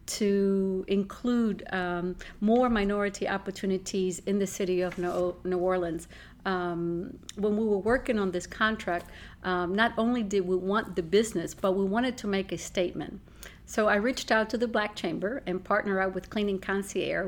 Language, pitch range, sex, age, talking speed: English, 185-215 Hz, female, 50-69, 170 wpm